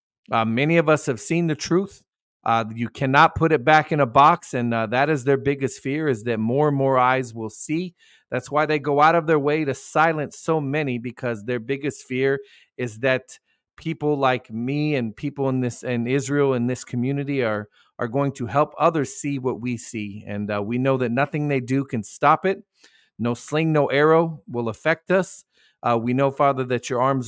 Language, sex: English, male